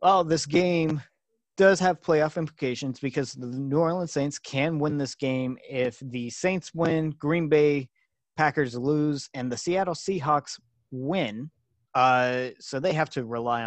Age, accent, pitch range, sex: 30-49, American, 130-165 Hz, male